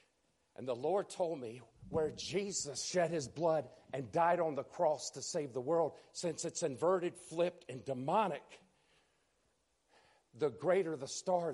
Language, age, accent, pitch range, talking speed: English, 50-69, American, 140-185 Hz, 150 wpm